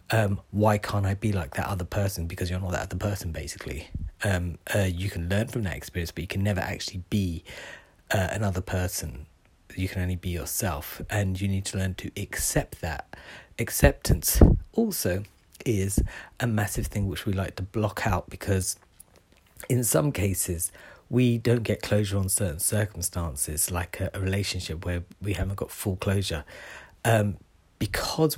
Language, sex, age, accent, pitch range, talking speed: English, male, 40-59, British, 90-105 Hz, 170 wpm